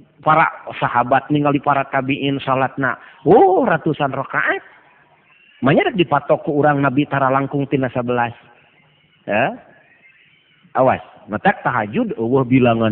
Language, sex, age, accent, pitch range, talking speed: Indonesian, male, 40-59, native, 135-195 Hz, 120 wpm